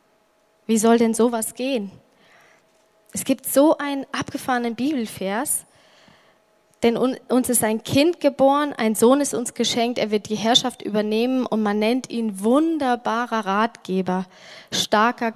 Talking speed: 135 wpm